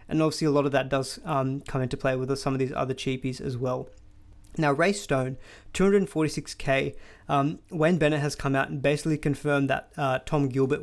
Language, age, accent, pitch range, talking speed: English, 20-39, Australian, 135-155 Hz, 200 wpm